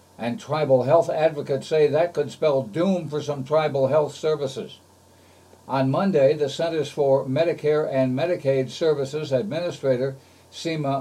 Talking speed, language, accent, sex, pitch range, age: 135 wpm, English, American, male, 130-160 Hz, 60-79